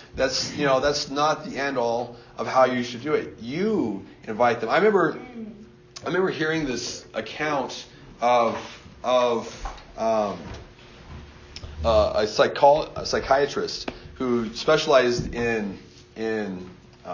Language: English